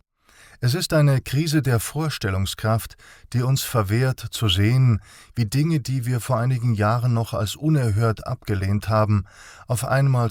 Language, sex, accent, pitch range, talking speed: German, male, German, 105-125 Hz, 145 wpm